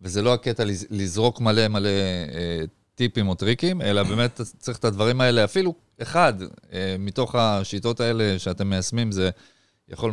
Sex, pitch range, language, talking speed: male, 100-120 Hz, Hebrew, 140 wpm